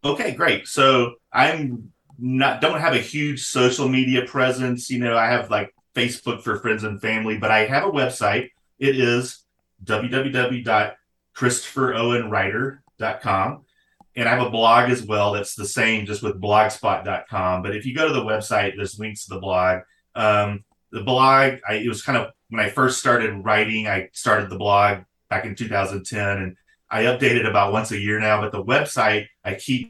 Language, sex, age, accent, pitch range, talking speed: English, male, 30-49, American, 100-125 Hz, 180 wpm